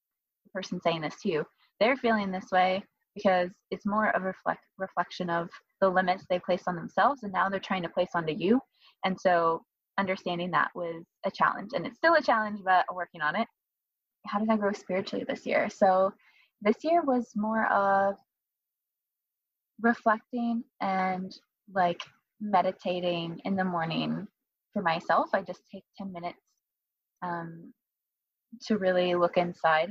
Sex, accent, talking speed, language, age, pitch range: female, American, 155 wpm, English, 20-39, 175-220 Hz